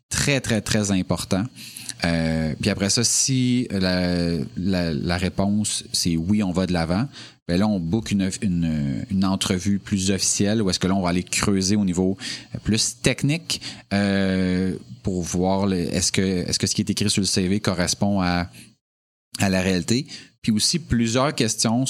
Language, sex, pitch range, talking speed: French, male, 95-115 Hz, 180 wpm